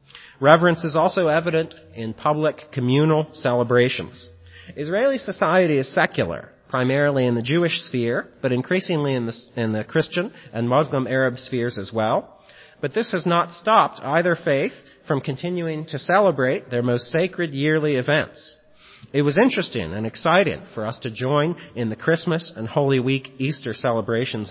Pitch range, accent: 115-155 Hz, American